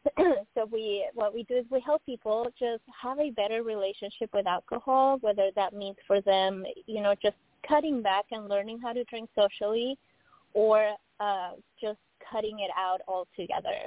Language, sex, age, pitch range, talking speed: English, female, 20-39, 185-225 Hz, 170 wpm